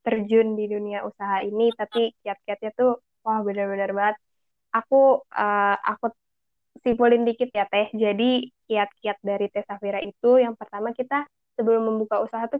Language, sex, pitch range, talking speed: Indonesian, female, 210-250 Hz, 145 wpm